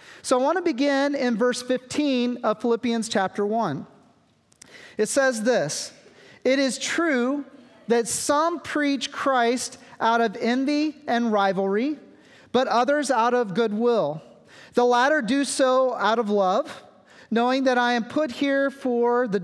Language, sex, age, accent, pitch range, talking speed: English, male, 40-59, American, 230-275 Hz, 145 wpm